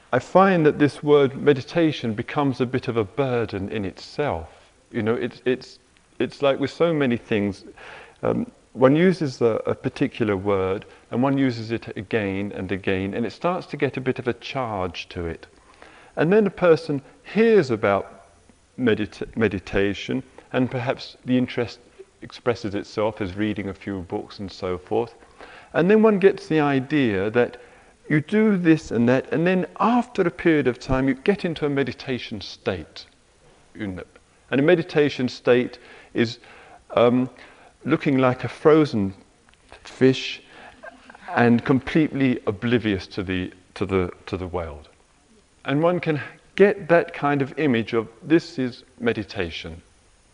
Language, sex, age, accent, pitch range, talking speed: English, male, 40-59, British, 110-150 Hz, 155 wpm